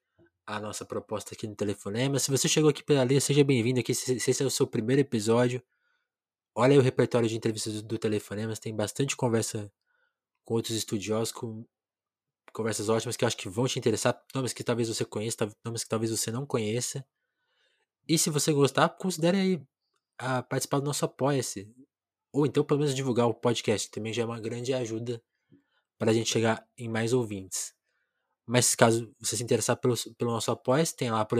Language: Portuguese